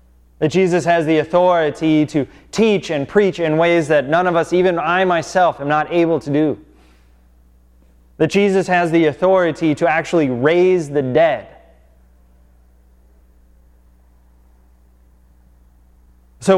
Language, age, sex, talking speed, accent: English, 20-39, male, 125 wpm, American